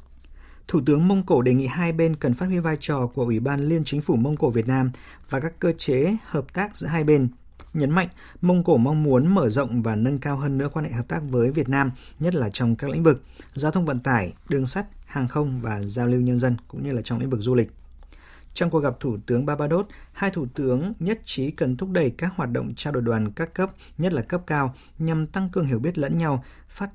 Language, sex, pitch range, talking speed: Vietnamese, male, 120-165 Hz, 250 wpm